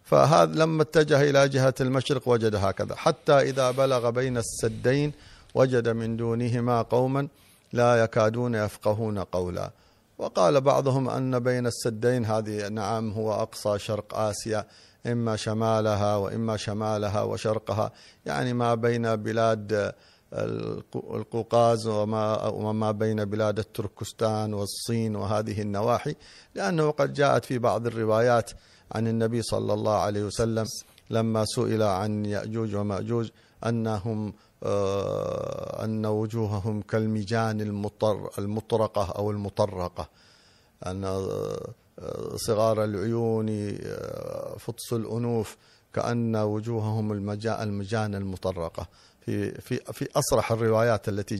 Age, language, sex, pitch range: 50-69, Arabic, male, 105-115 Hz